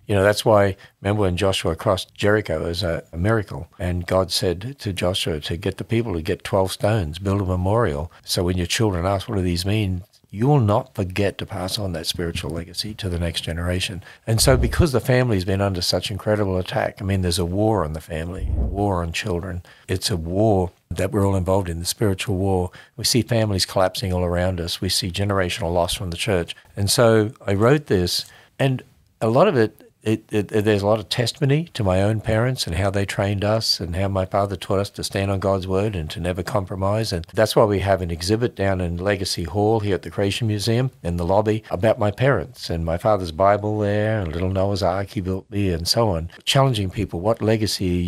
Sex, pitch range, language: male, 90-110 Hz, English